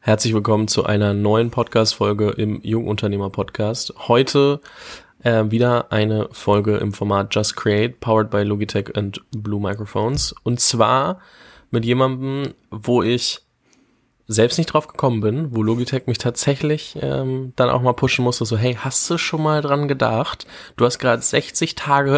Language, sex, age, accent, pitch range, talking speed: German, male, 20-39, German, 110-130 Hz, 155 wpm